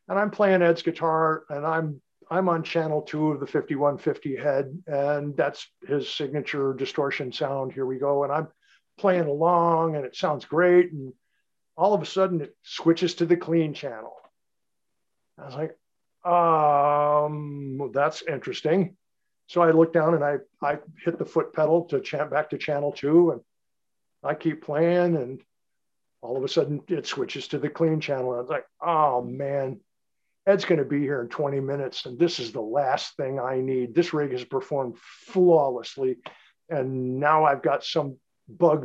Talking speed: 175 wpm